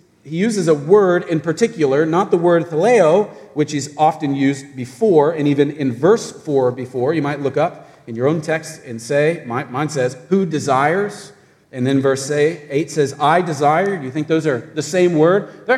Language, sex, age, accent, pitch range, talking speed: English, male, 40-59, American, 140-175 Hz, 195 wpm